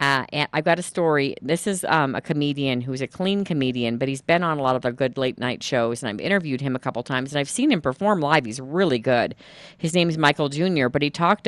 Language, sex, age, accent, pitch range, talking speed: English, female, 40-59, American, 120-145 Hz, 265 wpm